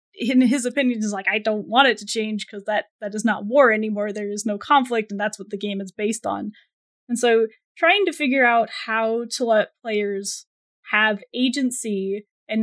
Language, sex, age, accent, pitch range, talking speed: English, female, 10-29, American, 210-250 Hz, 205 wpm